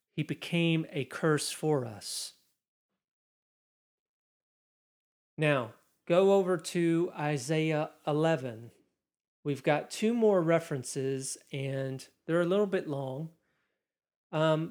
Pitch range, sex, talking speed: 135-165 Hz, male, 95 wpm